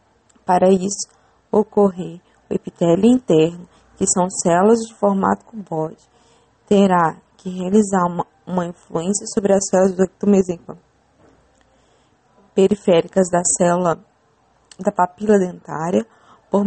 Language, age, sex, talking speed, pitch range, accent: English, 20-39, female, 110 wpm, 185-220 Hz, Brazilian